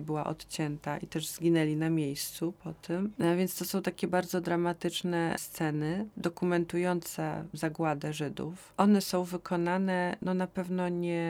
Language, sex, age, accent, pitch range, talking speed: Polish, female, 30-49, native, 155-175 Hz, 145 wpm